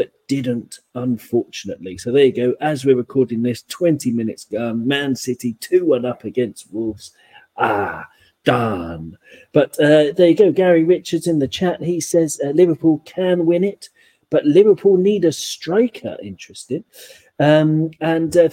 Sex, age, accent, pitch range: male, 40-59, British, 125-165 Hz